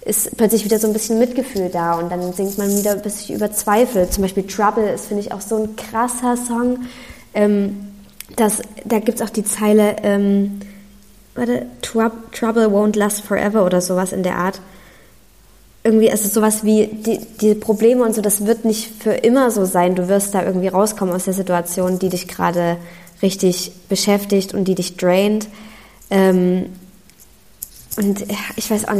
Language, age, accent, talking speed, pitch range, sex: German, 20-39, German, 180 wpm, 185-220 Hz, female